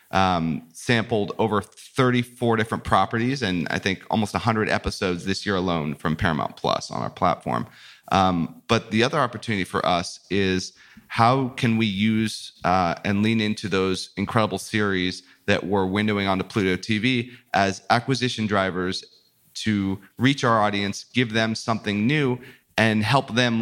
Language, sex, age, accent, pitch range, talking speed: English, male, 30-49, American, 95-115 Hz, 150 wpm